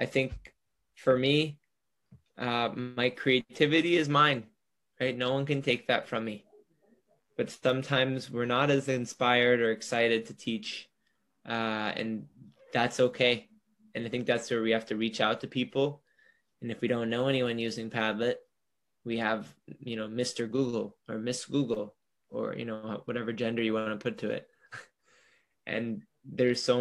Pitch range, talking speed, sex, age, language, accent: 115-135 Hz, 165 wpm, male, 20-39, English, American